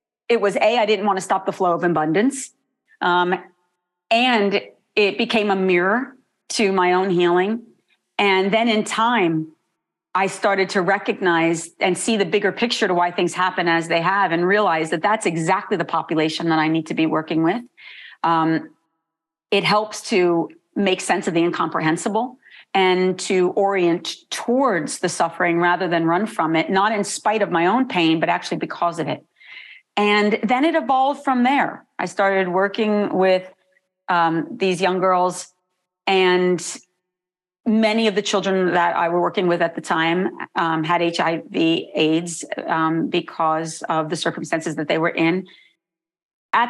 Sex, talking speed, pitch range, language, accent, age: female, 165 wpm, 170-205 Hz, English, American, 40-59